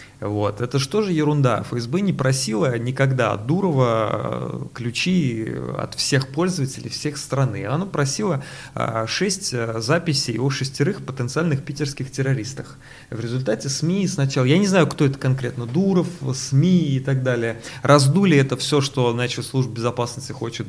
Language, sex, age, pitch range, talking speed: English, male, 30-49, 115-145 Hz, 145 wpm